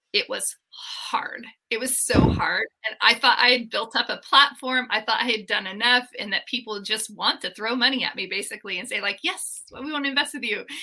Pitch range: 205-275 Hz